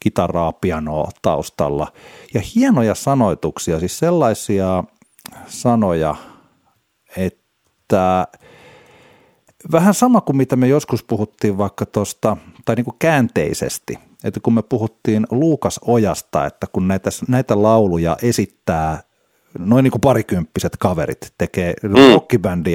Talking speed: 110 wpm